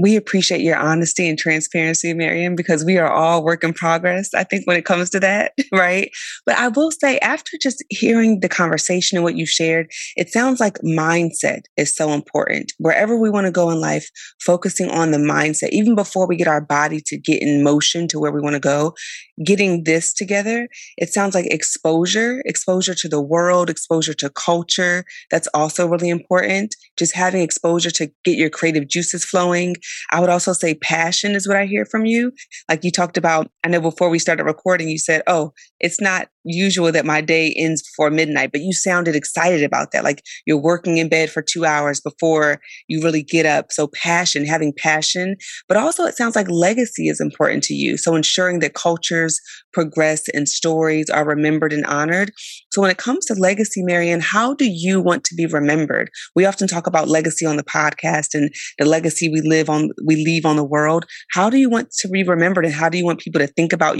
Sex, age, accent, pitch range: female, 20-39, American, 155-185 Hz